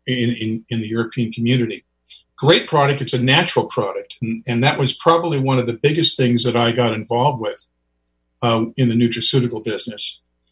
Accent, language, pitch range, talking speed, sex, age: American, English, 115-145 Hz, 185 wpm, male, 50-69